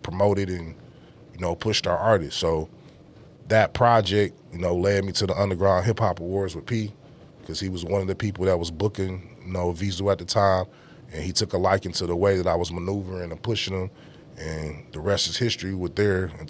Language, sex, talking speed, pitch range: English, male, 220 wpm, 90-100 Hz